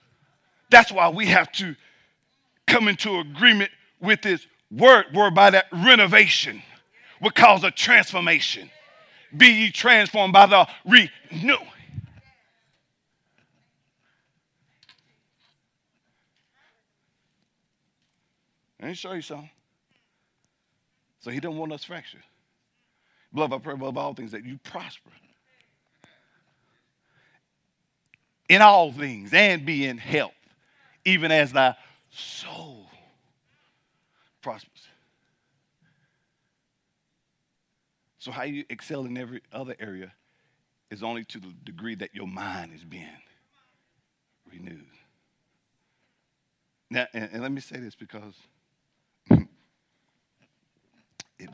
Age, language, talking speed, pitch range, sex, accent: 50-69, English, 100 wpm, 120-185 Hz, male, American